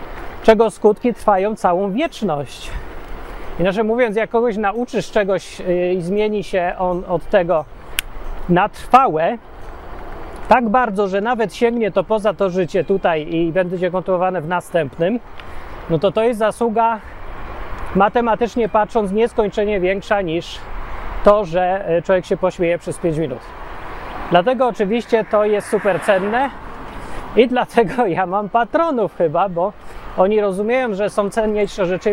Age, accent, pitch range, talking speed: 30-49, native, 175-215 Hz, 135 wpm